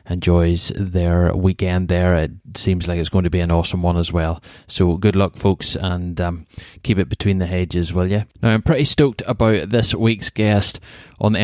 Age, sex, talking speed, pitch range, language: 20-39, male, 205 wpm, 90-105 Hz, English